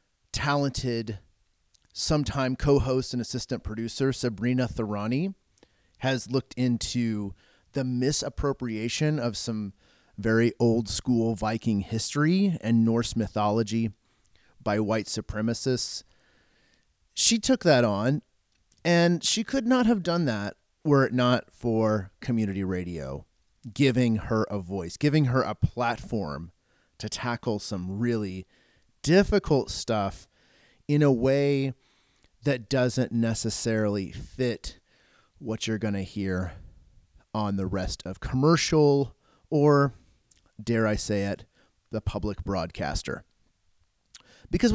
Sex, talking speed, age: male, 110 wpm, 30-49